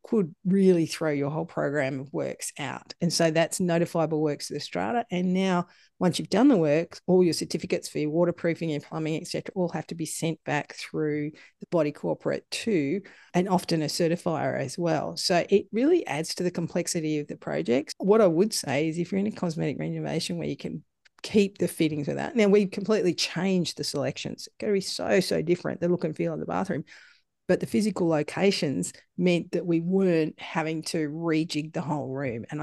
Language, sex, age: English, female, 40-59